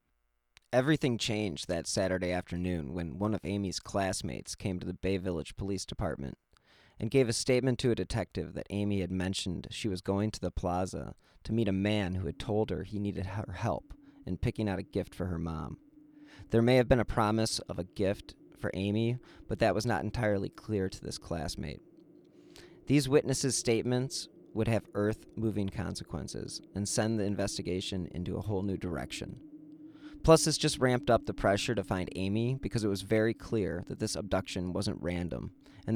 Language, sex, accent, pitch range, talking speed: English, male, American, 95-115 Hz, 185 wpm